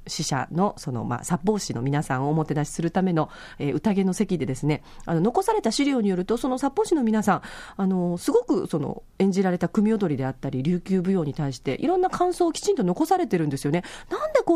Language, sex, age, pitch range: Japanese, female, 40-59, 165-245 Hz